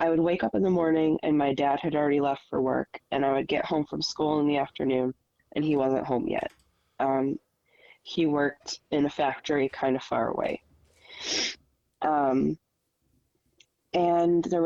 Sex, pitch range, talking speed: female, 135-170 Hz, 175 wpm